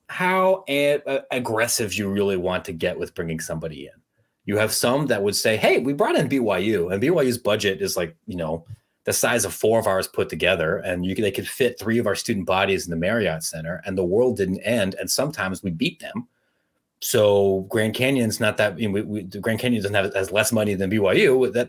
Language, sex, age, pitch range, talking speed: English, male, 30-49, 100-130 Hz, 220 wpm